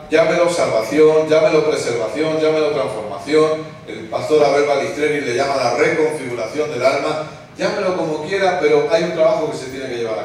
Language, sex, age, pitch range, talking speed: Spanish, male, 40-59, 145-175 Hz, 170 wpm